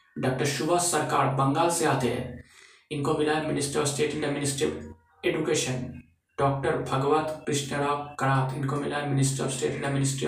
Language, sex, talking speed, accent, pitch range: Hindi, male, 185 wpm, native, 130-145 Hz